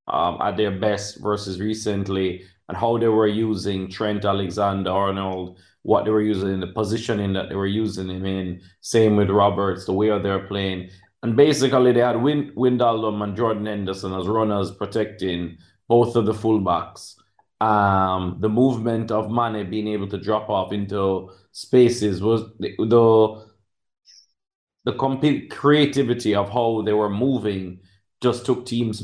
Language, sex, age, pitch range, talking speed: English, male, 30-49, 100-120 Hz, 155 wpm